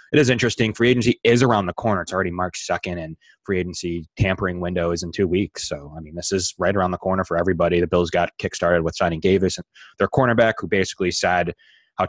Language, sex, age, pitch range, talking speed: English, male, 20-39, 85-95 Hz, 235 wpm